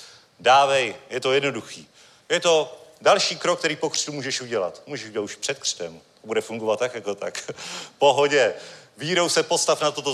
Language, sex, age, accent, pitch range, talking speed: Czech, male, 40-59, native, 135-155 Hz, 170 wpm